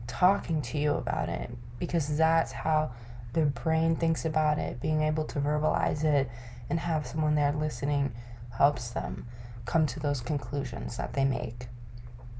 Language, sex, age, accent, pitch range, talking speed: English, female, 20-39, American, 120-165 Hz, 155 wpm